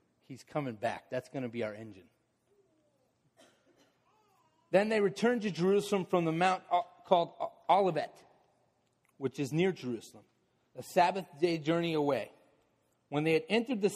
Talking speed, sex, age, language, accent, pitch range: 140 wpm, male, 40-59, English, American, 140-185 Hz